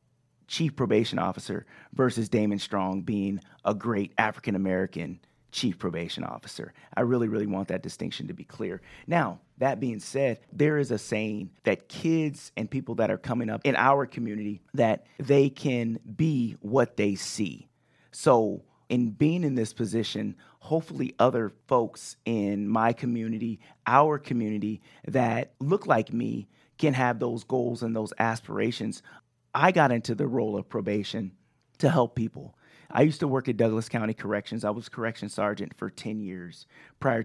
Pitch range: 110-135 Hz